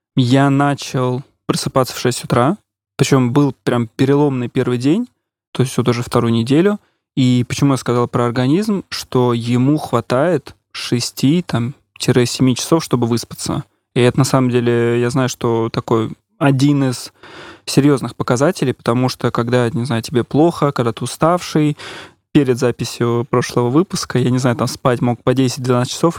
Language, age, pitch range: Russian, 20-39, 120-140 Hz